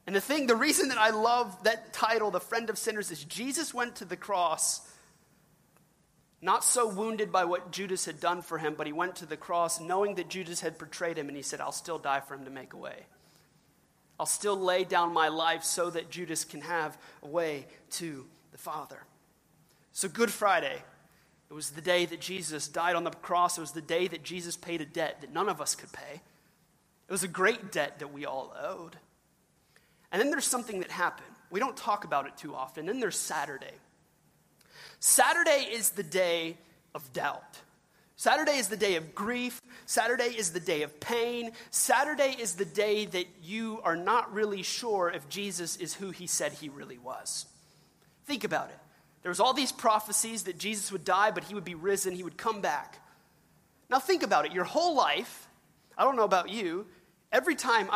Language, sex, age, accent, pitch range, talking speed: English, male, 30-49, American, 165-220 Hz, 200 wpm